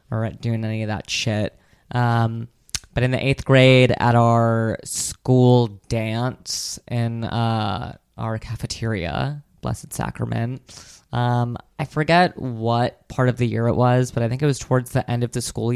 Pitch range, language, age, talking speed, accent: 115-125 Hz, English, 20-39, 165 wpm, American